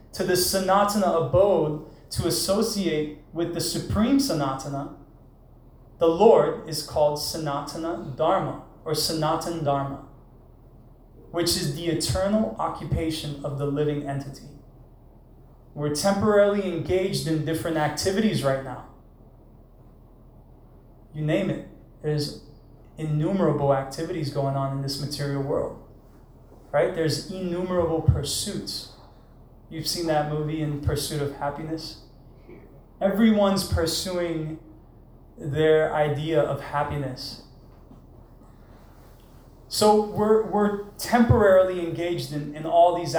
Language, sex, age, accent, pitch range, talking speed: English, male, 20-39, American, 145-190 Hz, 105 wpm